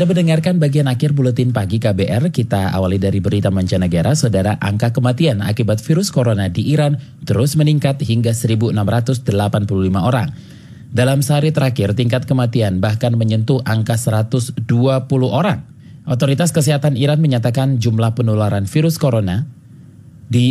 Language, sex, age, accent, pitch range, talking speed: Indonesian, male, 30-49, native, 105-140 Hz, 125 wpm